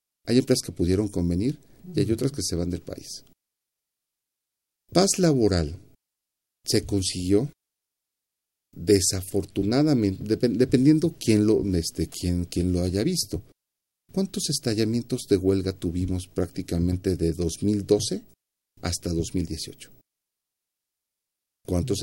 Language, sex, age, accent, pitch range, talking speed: Spanish, male, 50-69, Mexican, 90-110 Hz, 95 wpm